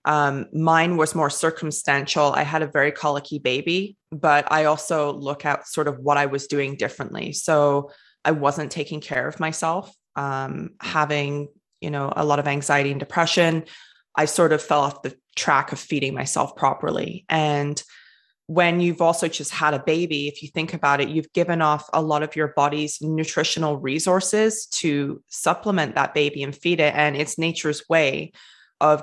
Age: 20-39